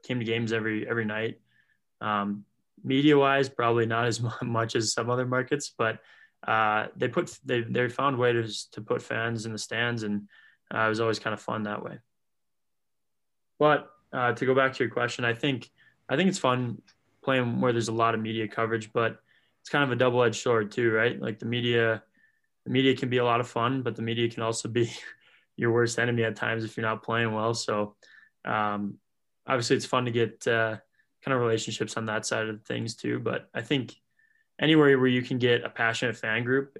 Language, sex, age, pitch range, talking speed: English, male, 20-39, 110-125 Hz, 210 wpm